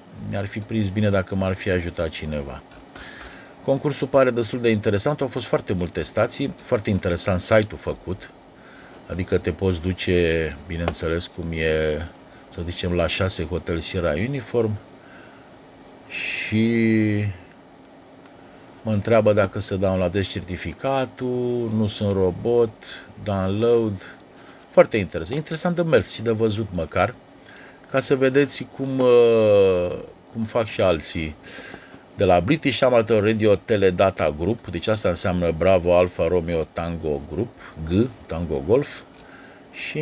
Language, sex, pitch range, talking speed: Romanian, male, 90-115 Hz, 130 wpm